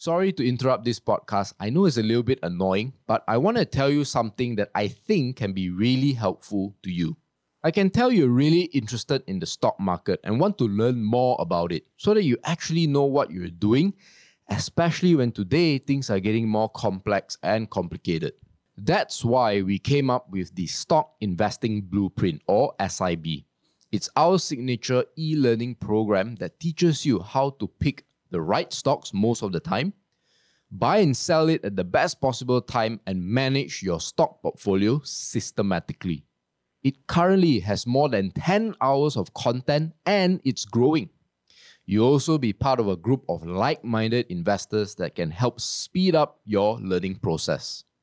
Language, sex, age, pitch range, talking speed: English, male, 20-39, 105-155 Hz, 170 wpm